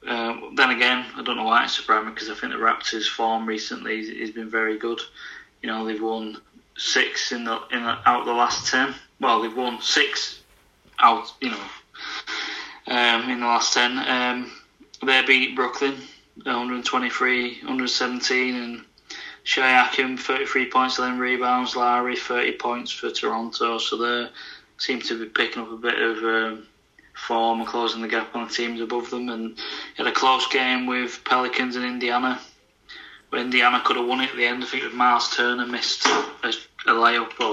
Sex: male